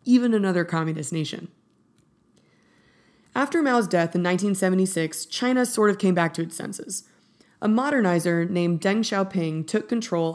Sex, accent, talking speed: female, American, 140 wpm